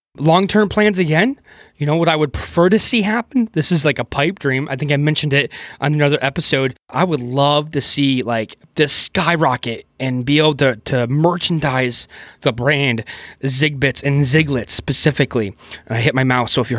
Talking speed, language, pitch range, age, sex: 190 wpm, English, 125-150 Hz, 20-39, male